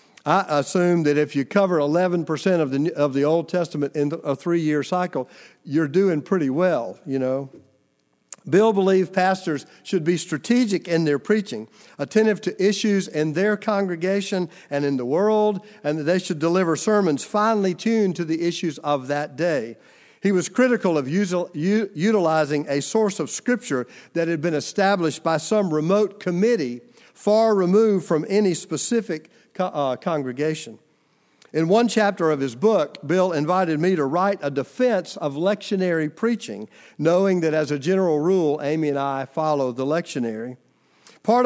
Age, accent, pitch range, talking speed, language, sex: 50-69, American, 150-200 Hz, 160 wpm, English, male